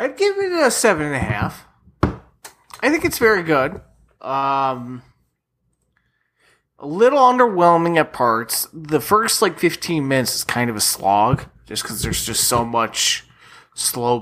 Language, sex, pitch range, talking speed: English, male, 110-140 Hz, 150 wpm